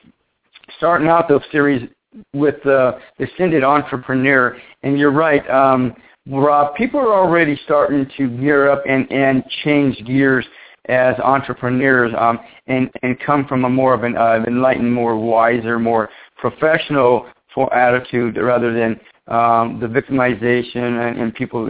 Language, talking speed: English, 140 wpm